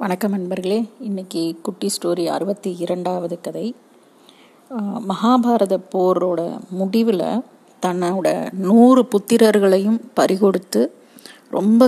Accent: native